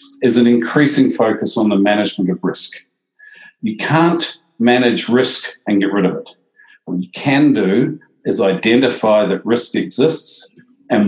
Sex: male